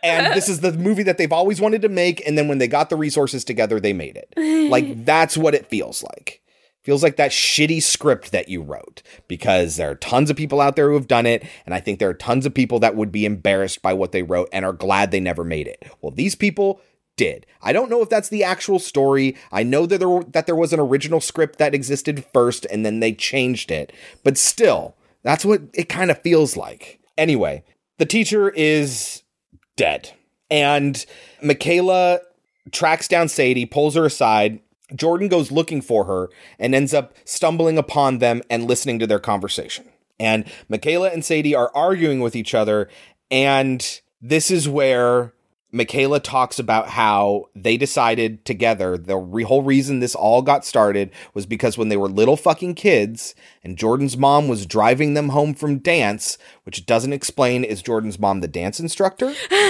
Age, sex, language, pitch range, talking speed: 30-49, male, English, 115-165 Hz, 195 wpm